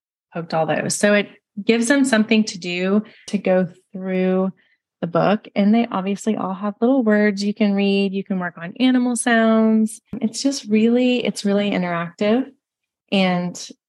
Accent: American